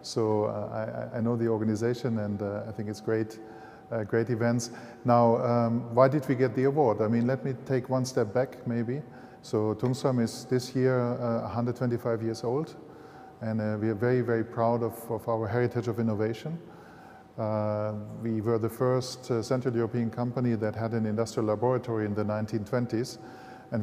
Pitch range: 110-125 Hz